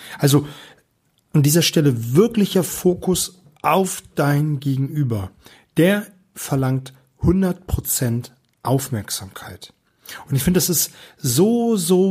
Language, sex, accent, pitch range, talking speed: German, male, German, 130-160 Hz, 100 wpm